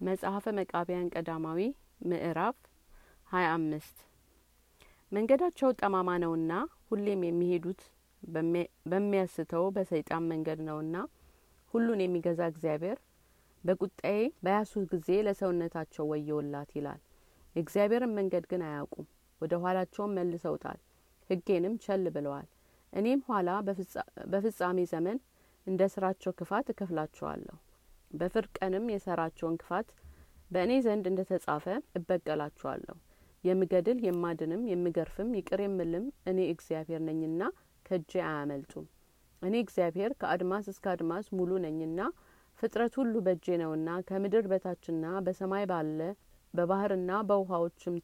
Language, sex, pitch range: Amharic, female, 165-200 Hz